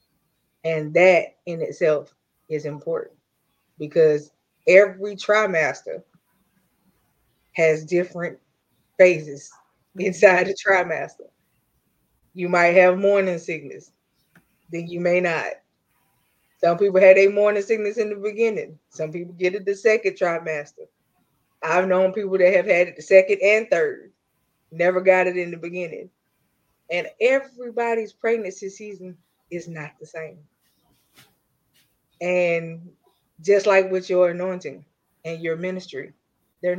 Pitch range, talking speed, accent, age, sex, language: 165-205 Hz, 120 wpm, American, 20-39, female, English